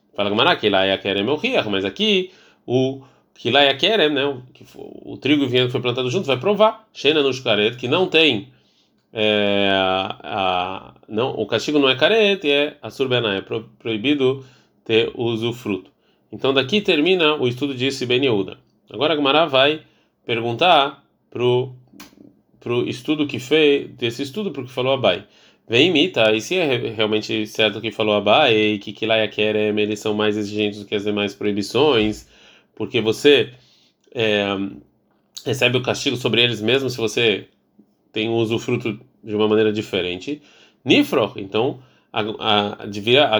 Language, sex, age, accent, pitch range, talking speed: Portuguese, male, 20-39, Brazilian, 110-140 Hz, 155 wpm